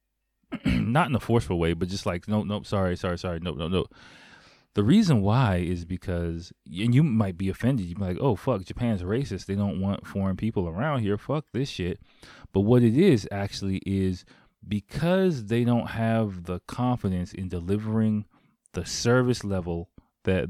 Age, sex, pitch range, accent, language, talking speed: 20-39, male, 90-115 Hz, American, English, 180 wpm